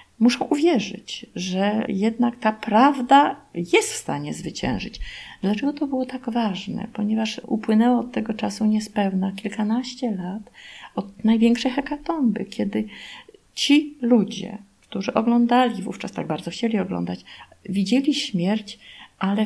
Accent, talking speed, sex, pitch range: native, 120 wpm, female, 195-245 Hz